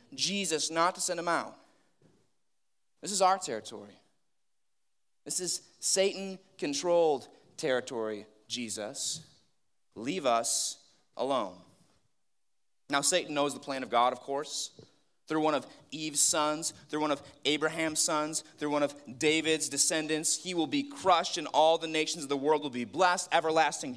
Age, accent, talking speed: 30-49, American, 145 wpm